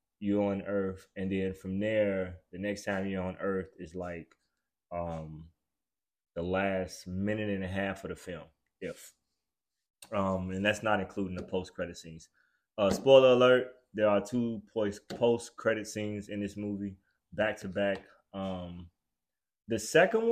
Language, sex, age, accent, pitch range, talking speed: English, male, 20-39, American, 95-115 Hz, 150 wpm